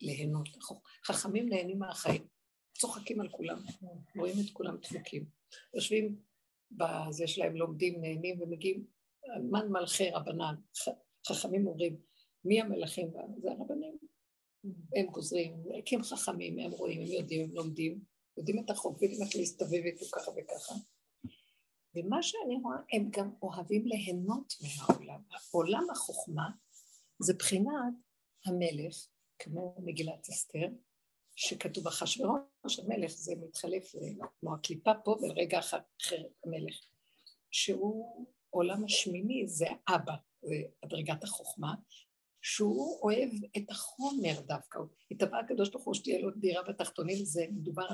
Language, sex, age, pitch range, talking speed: Hebrew, female, 50-69, 170-215 Hz, 120 wpm